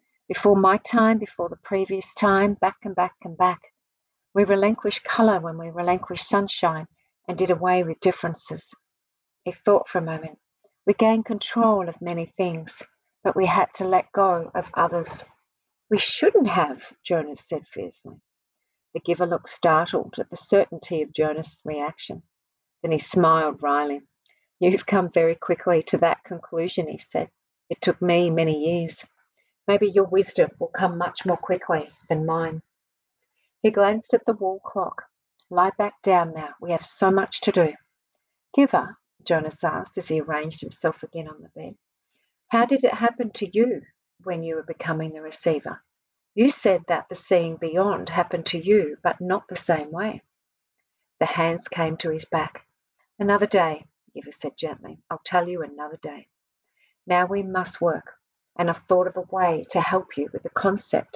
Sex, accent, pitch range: female, Australian, 165-200 Hz